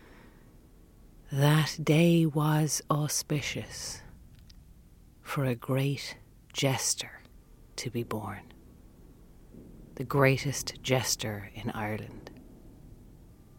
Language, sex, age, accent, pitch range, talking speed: English, female, 40-59, Irish, 115-135 Hz, 70 wpm